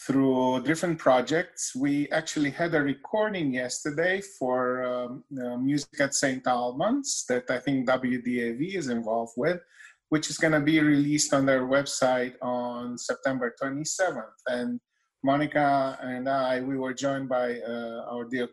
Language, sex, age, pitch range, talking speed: English, male, 30-49, 125-155 Hz, 145 wpm